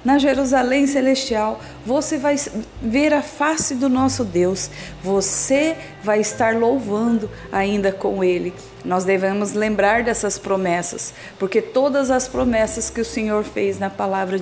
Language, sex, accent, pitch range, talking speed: Portuguese, female, Brazilian, 190-245 Hz, 135 wpm